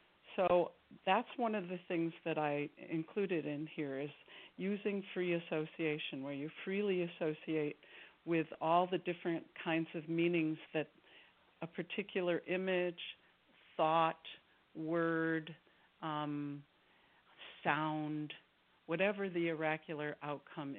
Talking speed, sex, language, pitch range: 110 wpm, female, English, 150-180 Hz